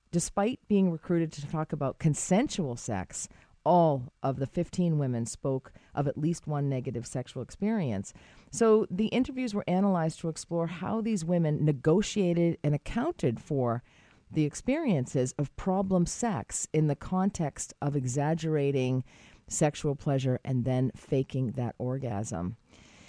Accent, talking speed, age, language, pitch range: American, 135 wpm, 40-59, English, 130-170 Hz